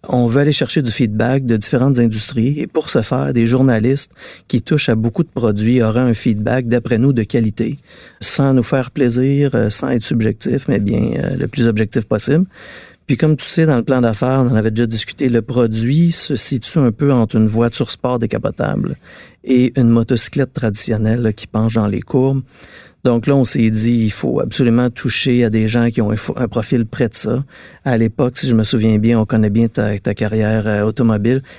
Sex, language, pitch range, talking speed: male, French, 110-130 Hz, 205 wpm